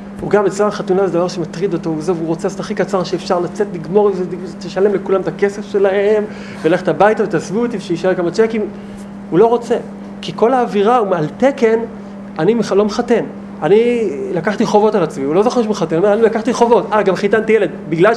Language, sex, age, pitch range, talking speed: Hebrew, male, 30-49, 195-225 Hz, 205 wpm